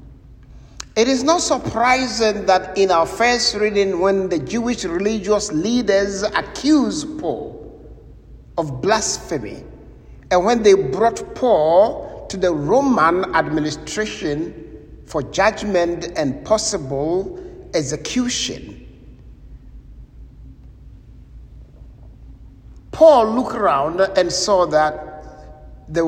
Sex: male